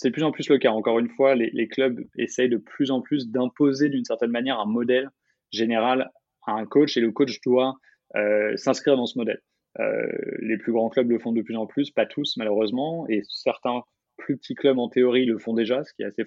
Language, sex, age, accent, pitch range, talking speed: French, male, 20-39, French, 110-135 Hz, 240 wpm